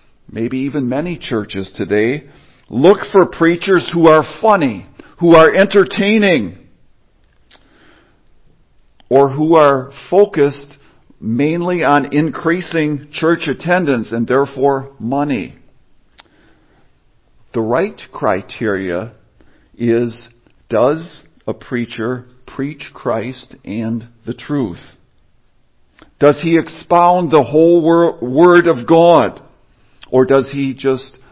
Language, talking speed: English, 95 wpm